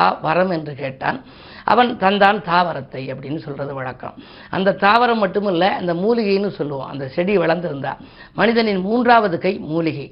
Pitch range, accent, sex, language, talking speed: 160-205 Hz, native, female, Tamil, 90 wpm